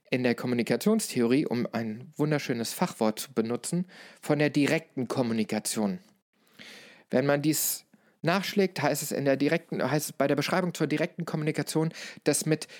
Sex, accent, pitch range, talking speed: male, German, 125-170 Hz, 150 wpm